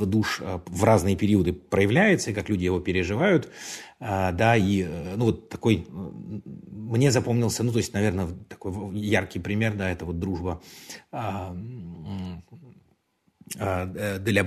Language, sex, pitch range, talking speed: Russian, male, 95-115 Hz, 120 wpm